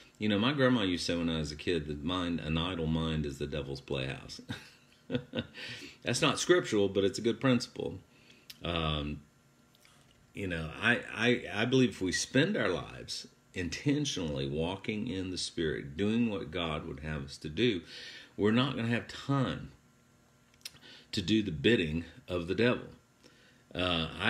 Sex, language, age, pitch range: male, English, 50-69, 80-110 Hz